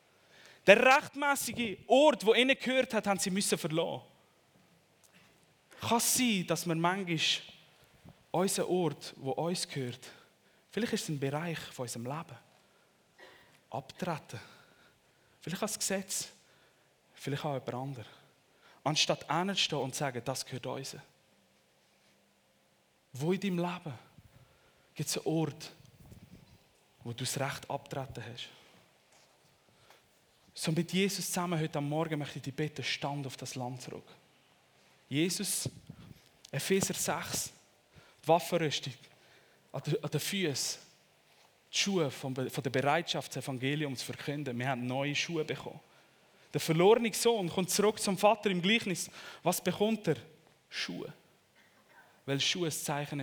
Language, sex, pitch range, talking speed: German, male, 135-180 Hz, 130 wpm